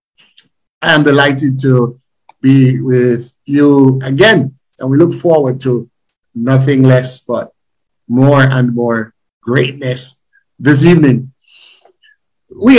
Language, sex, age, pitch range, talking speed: English, male, 60-79, 130-170 Hz, 110 wpm